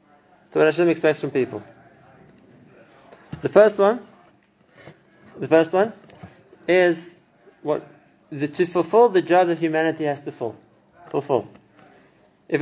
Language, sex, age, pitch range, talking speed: English, male, 30-49, 155-200 Hz, 125 wpm